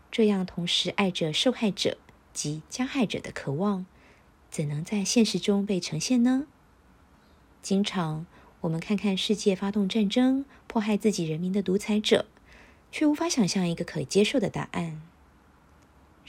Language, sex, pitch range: Chinese, female, 150-215 Hz